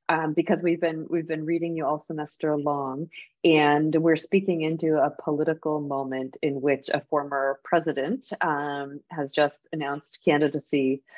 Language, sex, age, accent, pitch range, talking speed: English, female, 30-49, American, 140-165 Hz, 150 wpm